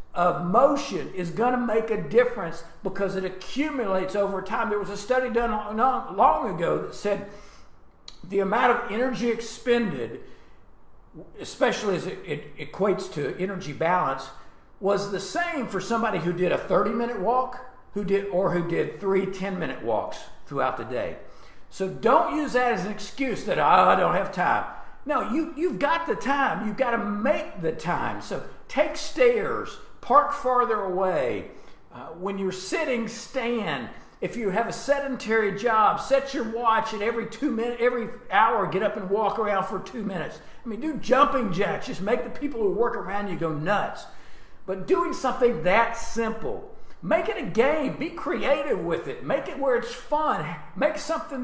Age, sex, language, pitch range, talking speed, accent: 50-69, male, English, 190-250 Hz, 170 wpm, American